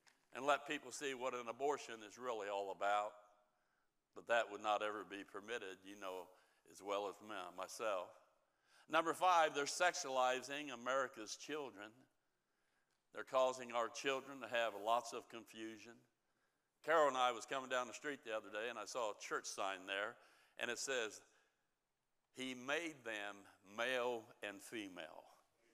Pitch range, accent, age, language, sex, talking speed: 115-140 Hz, American, 60-79, English, male, 155 wpm